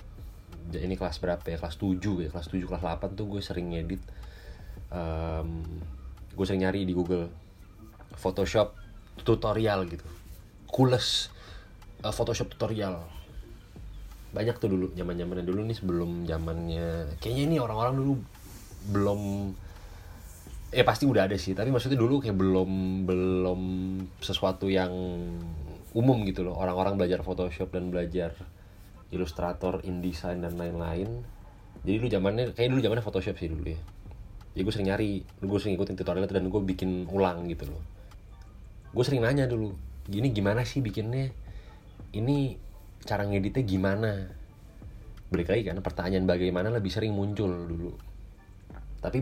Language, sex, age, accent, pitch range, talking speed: Indonesian, male, 20-39, native, 90-105 Hz, 135 wpm